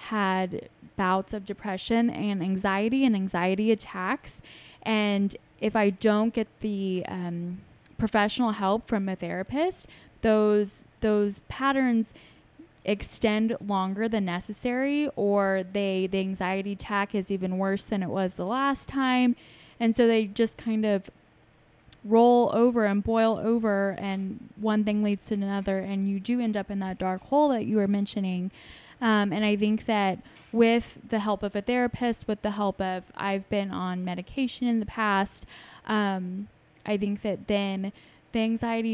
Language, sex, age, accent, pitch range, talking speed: English, female, 20-39, American, 195-225 Hz, 155 wpm